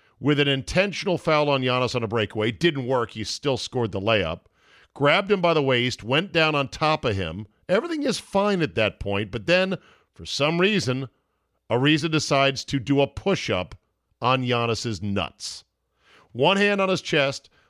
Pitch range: 110-150 Hz